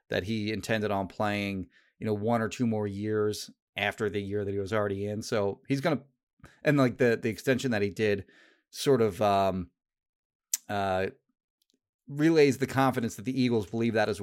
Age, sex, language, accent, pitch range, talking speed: 30-49, male, English, American, 105-135 Hz, 190 wpm